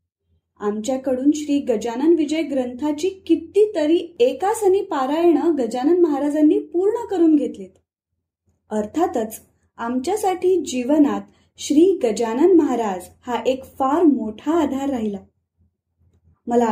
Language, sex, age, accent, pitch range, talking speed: Marathi, female, 20-39, native, 215-325 Hz, 95 wpm